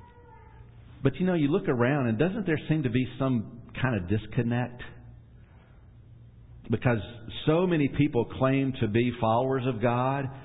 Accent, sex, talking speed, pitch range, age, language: American, male, 150 wpm, 110-140 Hz, 50-69, English